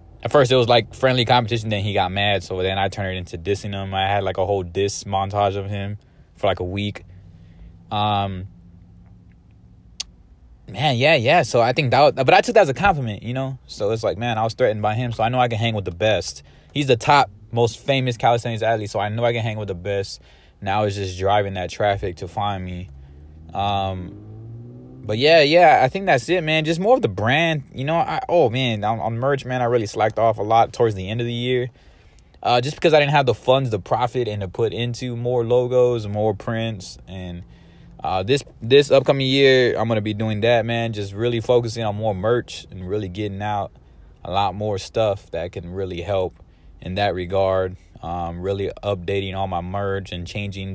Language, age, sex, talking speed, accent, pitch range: English, 20-39, male, 220 wpm, American, 95-120 Hz